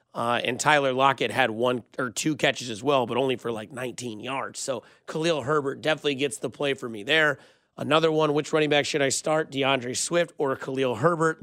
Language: English